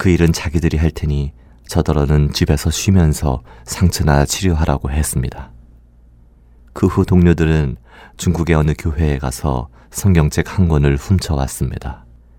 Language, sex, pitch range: Korean, male, 65-85 Hz